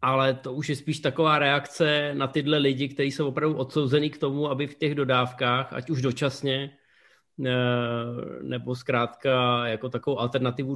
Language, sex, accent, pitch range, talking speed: Czech, male, native, 130-155 Hz, 155 wpm